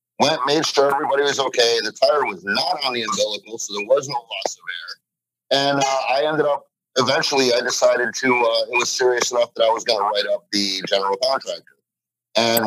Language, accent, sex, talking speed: English, American, male, 215 wpm